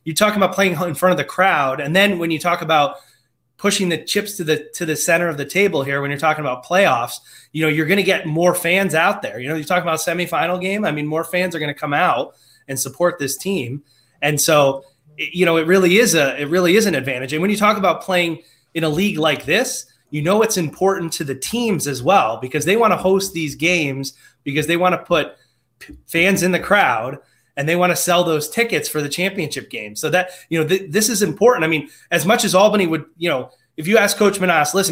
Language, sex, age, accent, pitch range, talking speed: English, male, 20-39, American, 145-185 Hz, 250 wpm